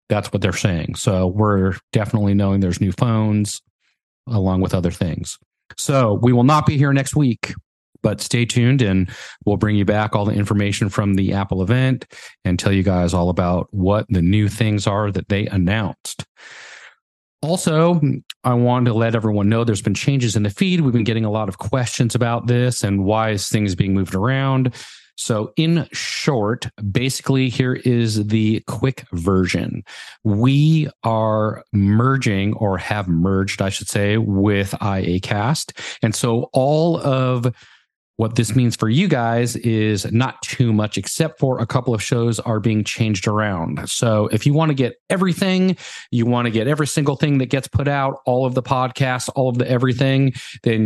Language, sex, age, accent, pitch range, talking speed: English, male, 40-59, American, 105-130 Hz, 180 wpm